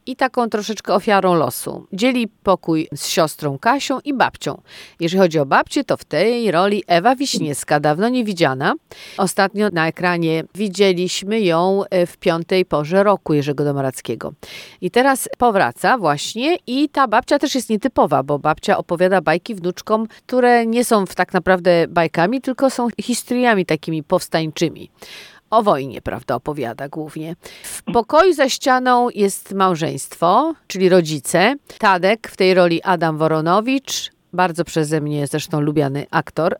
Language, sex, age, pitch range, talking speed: Polish, female, 40-59, 165-240 Hz, 145 wpm